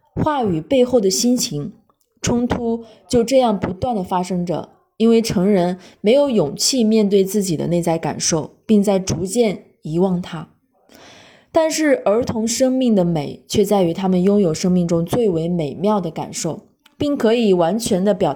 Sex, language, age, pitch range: female, Chinese, 20-39, 175-230 Hz